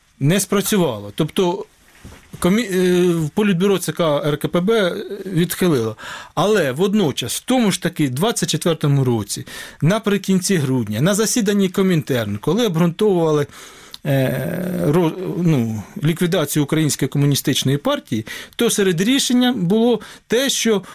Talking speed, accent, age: 105 wpm, native, 40-59